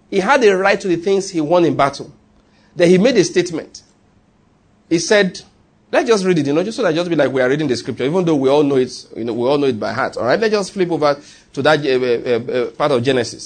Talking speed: 280 wpm